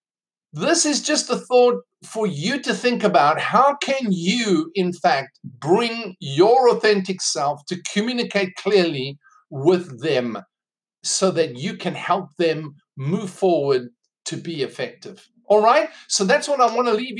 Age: 50-69